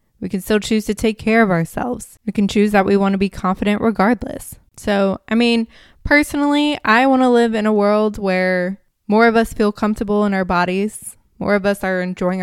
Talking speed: 210 wpm